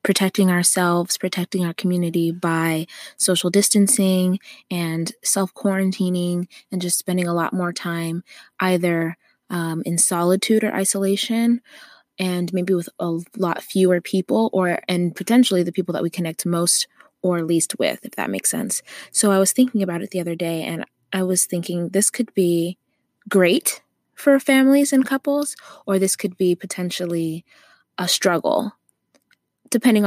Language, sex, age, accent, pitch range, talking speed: English, female, 20-39, American, 170-200 Hz, 150 wpm